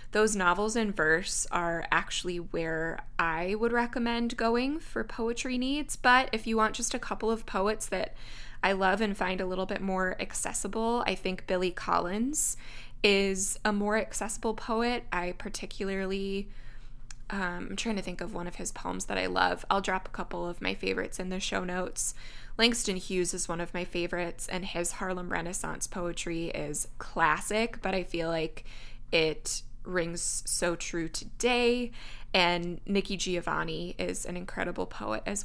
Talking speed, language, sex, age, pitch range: 170 wpm, English, female, 20-39, 170-210 Hz